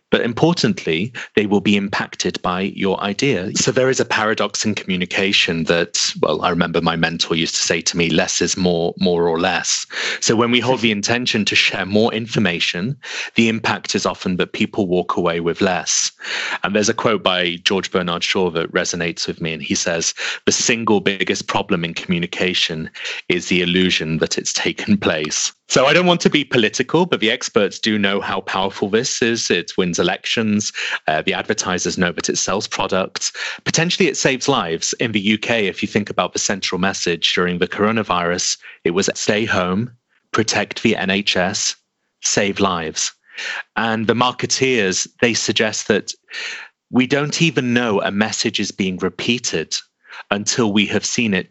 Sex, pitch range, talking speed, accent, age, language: male, 90-125 Hz, 180 wpm, British, 30-49, English